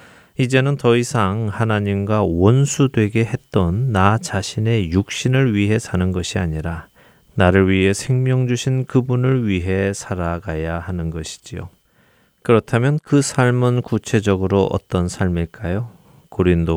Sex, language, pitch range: male, Korean, 90-115 Hz